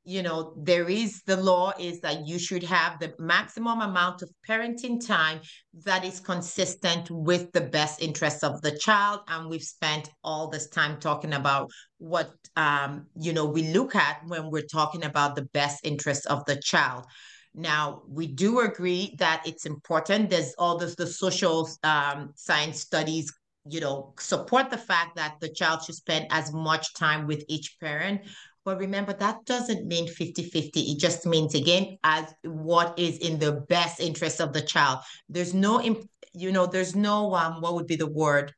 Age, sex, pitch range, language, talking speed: 30-49, female, 155-190 Hz, English, 180 wpm